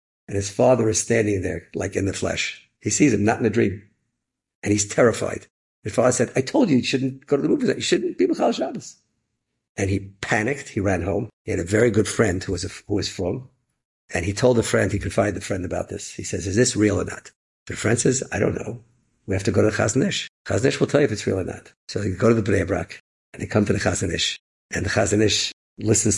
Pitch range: 100-125 Hz